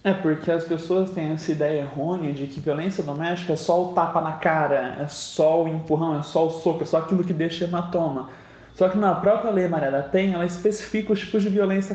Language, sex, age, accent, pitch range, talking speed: Portuguese, male, 20-39, Brazilian, 160-200 Hz, 230 wpm